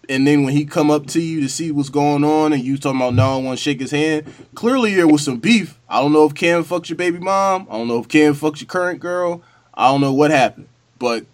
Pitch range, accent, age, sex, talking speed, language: 115-150 Hz, American, 20-39, male, 280 wpm, English